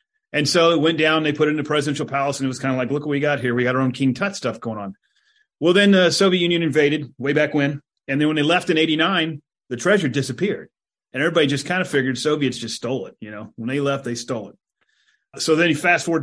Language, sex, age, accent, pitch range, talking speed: English, male, 30-49, American, 140-185 Hz, 275 wpm